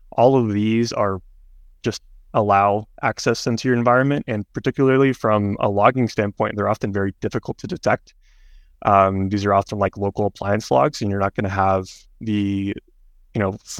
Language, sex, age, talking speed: English, male, 20-39, 170 wpm